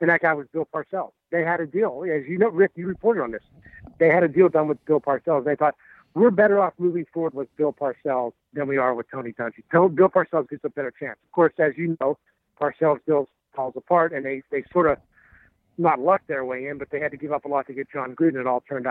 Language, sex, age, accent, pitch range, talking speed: English, male, 60-79, American, 140-175 Hz, 260 wpm